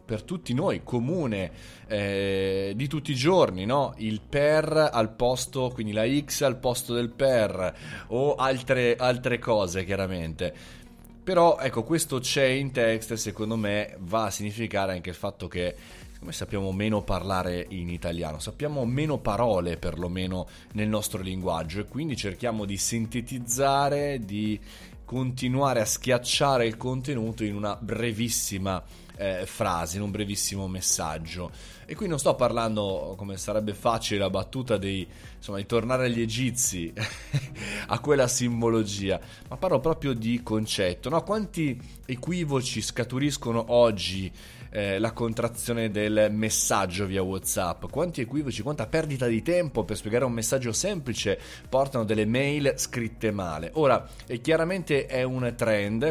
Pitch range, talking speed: 100-130 Hz, 140 wpm